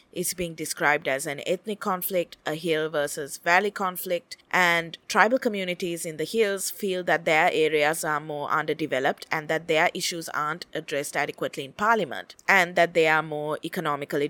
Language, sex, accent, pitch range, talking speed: English, female, Indian, 155-185 Hz, 170 wpm